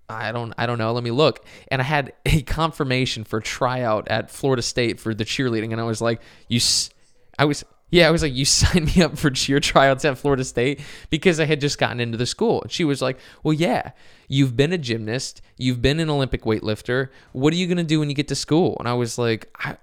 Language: English